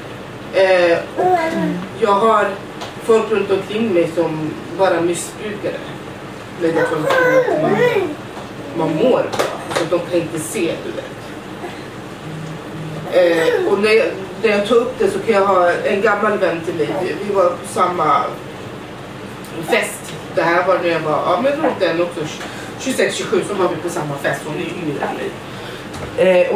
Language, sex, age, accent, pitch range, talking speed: Swedish, female, 30-49, native, 160-220 Hz, 150 wpm